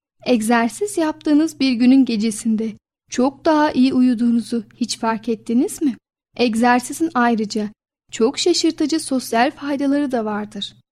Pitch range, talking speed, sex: 225-280 Hz, 115 wpm, female